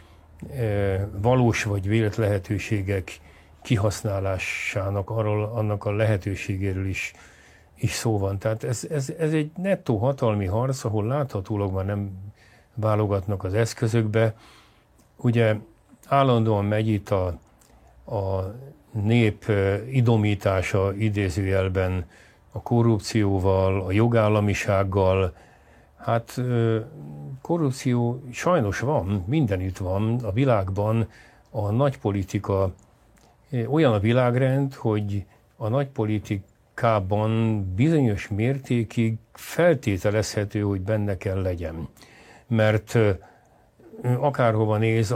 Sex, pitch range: male, 100-115 Hz